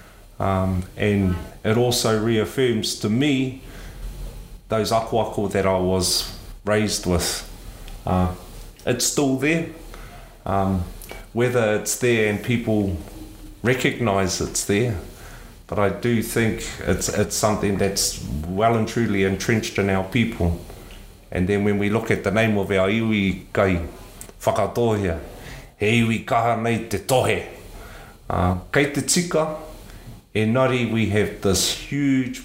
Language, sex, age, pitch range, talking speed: English, male, 30-49, 100-120 Hz, 130 wpm